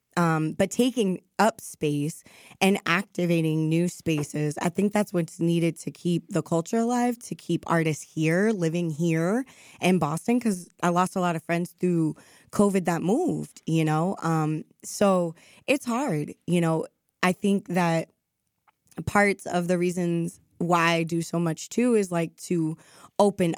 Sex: female